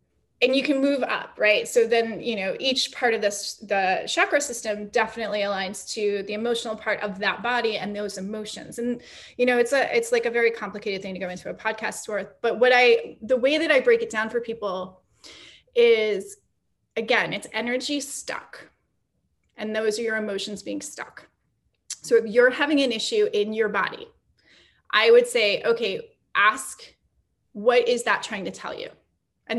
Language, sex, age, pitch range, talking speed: English, female, 20-39, 205-250 Hz, 185 wpm